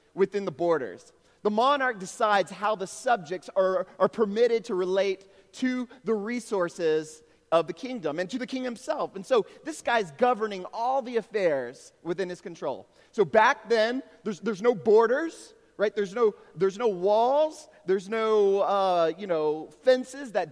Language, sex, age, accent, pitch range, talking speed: English, male, 30-49, American, 180-245 Hz, 165 wpm